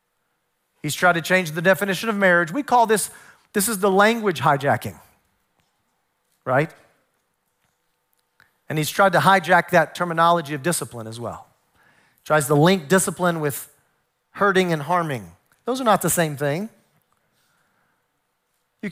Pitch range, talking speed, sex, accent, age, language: 150-210 Hz, 135 wpm, male, American, 40-59, English